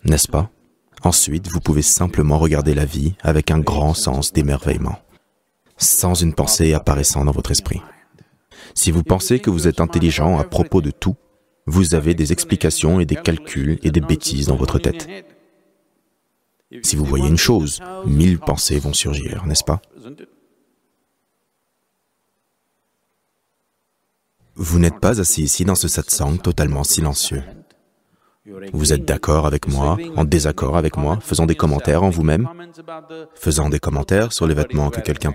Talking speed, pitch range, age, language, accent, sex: 150 wpm, 75-90 Hz, 30-49, English, French, male